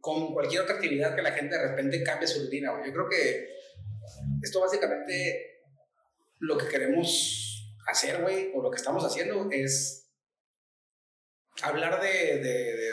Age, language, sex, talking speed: 30-49, Spanish, male, 155 wpm